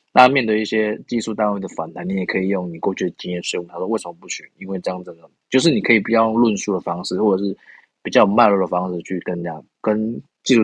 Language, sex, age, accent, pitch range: Chinese, male, 20-39, native, 90-105 Hz